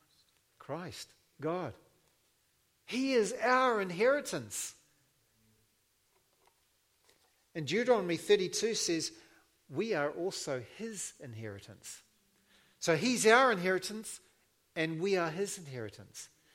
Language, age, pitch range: English, 60-79, 125-185 Hz